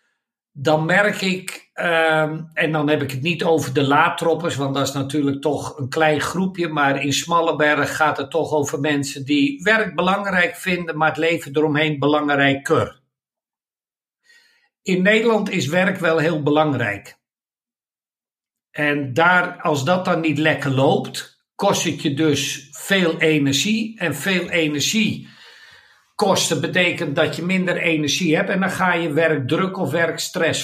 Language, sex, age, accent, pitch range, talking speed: German, male, 60-79, Dutch, 150-190 Hz, 145 wpm